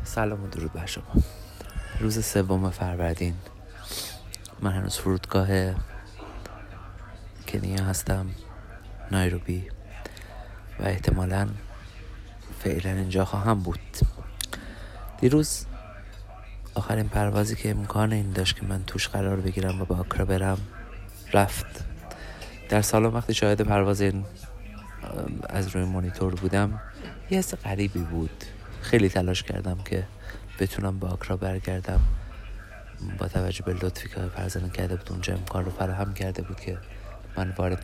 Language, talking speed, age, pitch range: Persian, 115 wpm, 30-49, 90-100 Hz